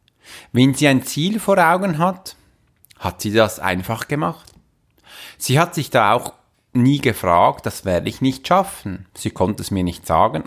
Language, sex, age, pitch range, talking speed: German, male, 30-49, 110-145 Hz, 170 wpm